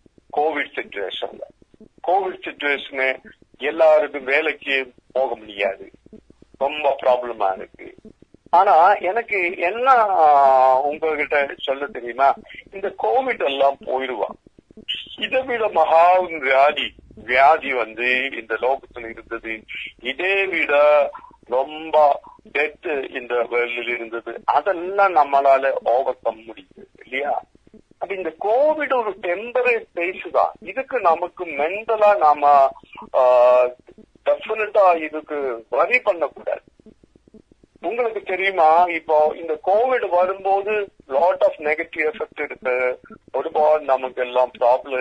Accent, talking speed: native, 55 wpm